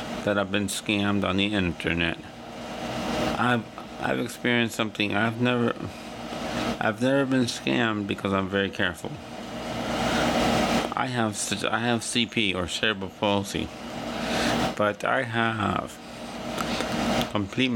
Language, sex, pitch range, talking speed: English, male, 90-110 Hz, 110 wpm